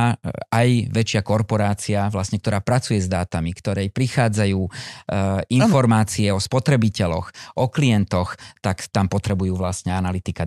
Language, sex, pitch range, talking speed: Slovak, male, 95-120 Hz, 115 wpm